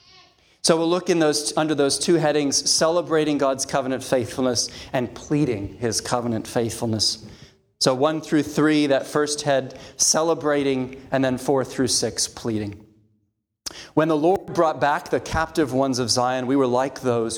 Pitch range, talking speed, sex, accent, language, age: 130-185 Hz, 150 wpm, male, American, English, 40-59